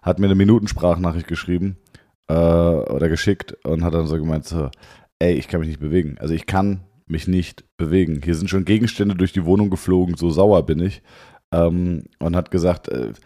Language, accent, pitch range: German, German, 90-115 Hz